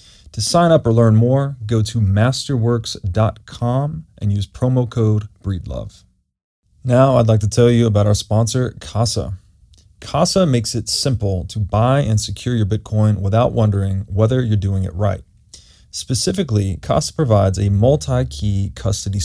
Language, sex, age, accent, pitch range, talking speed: English, male, 30-49, American, 100-120 Hz, 150 wpm